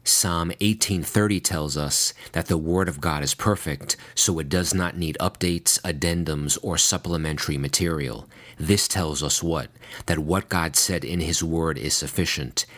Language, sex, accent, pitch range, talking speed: English, male, American, 80-95 Hz, 160 wpm